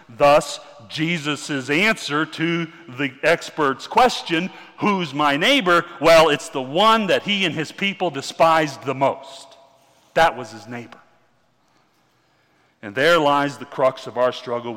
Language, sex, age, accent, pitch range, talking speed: English, male, 40-59, American, 135-175 Hz, 140 wpm